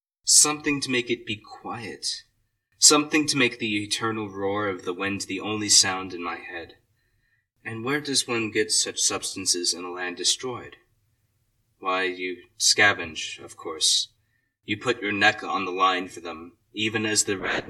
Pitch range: 95-120 Hz